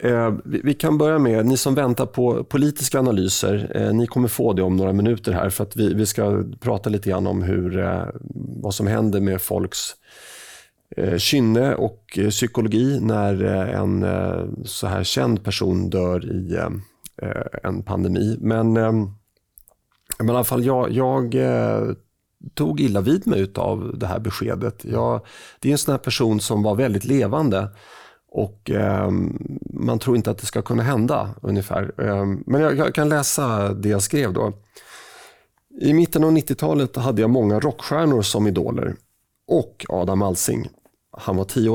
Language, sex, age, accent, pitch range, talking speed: Swedish, male, 30-49, native, 100-125 Hz, 155 wpm